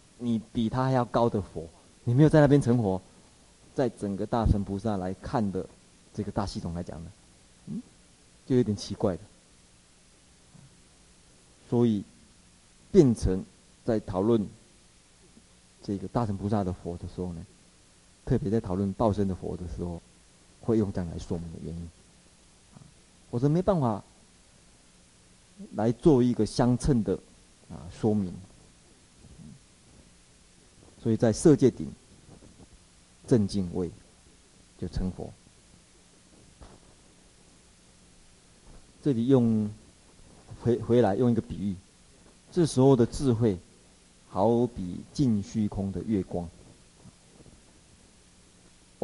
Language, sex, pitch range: Chinese, male, 85-115 Hz